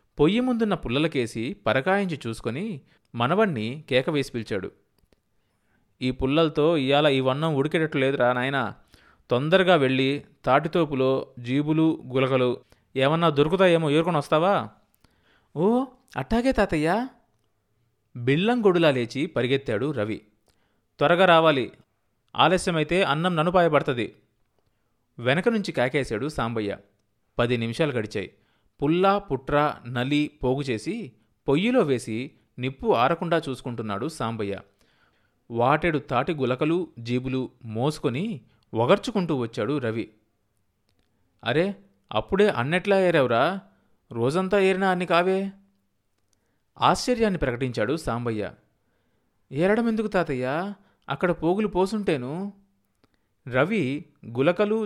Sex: male